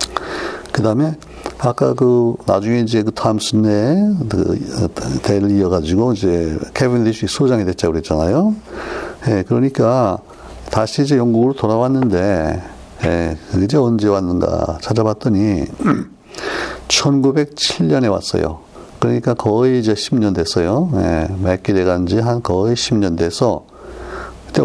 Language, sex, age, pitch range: Korean, male, 60-79, 90-125 Hz